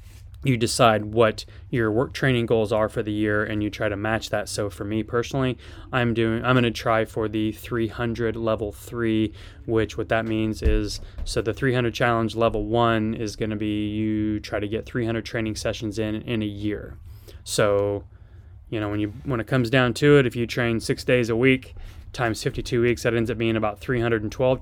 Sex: male